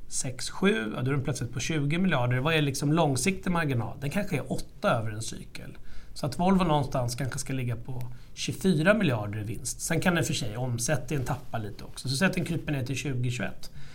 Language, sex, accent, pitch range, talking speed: Swedish, male, native, 130-165 Hz, 225 wpm